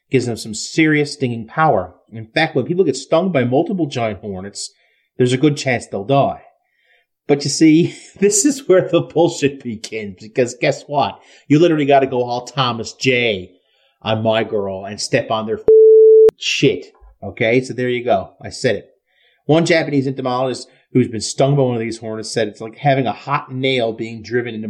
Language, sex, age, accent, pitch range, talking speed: English, male, 30-49, American, 110-150 Hz, 190 wpm